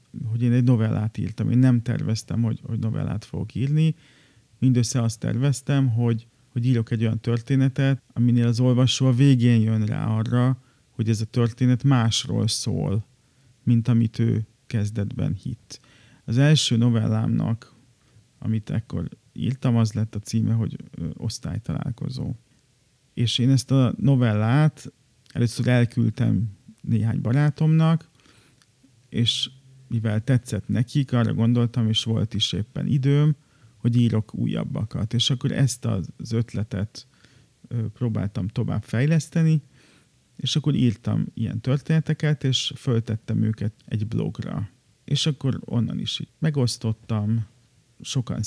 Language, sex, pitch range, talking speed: Hungarian, male, 115-135 Hz, 125 wpm